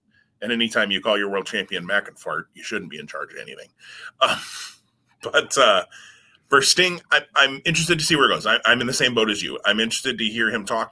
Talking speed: 240 wpm